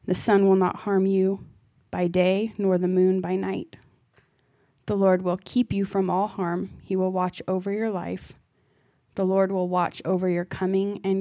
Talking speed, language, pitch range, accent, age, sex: 185 wpm, English, 170-195 Hz, American, 20-39, female